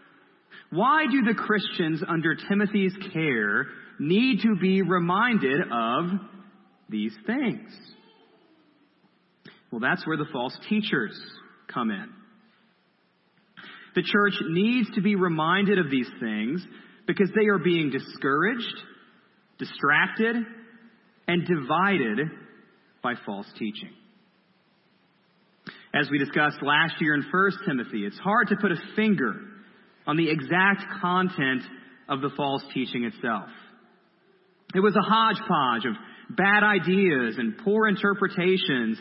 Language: English